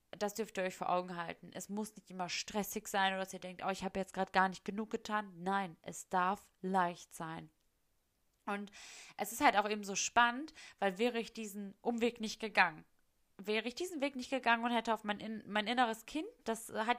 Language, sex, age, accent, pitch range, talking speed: German, female, 20-39, German, 195-235 Hz, 215 wpm